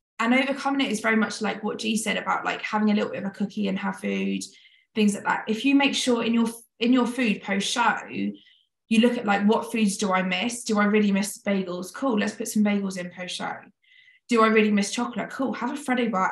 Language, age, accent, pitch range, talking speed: English, 20-39, British, 205-245 Hz, 245 wpm